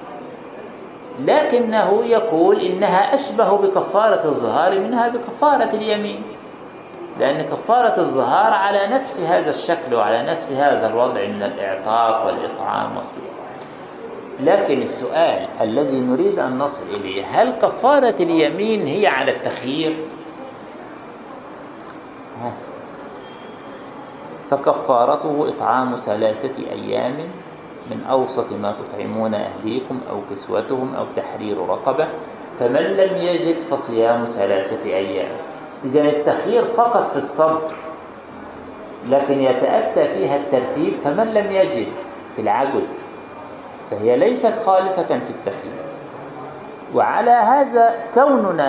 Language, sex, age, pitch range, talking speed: Arabic, male, 50-69, 150-240 Hz, 95 wpm